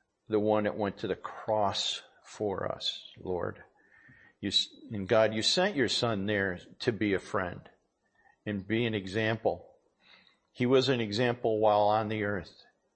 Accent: American